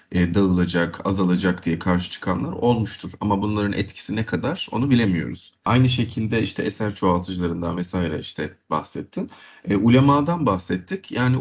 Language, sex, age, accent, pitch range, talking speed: Turkish, male, 30-49, native, 90-120 Hz, 135 wpm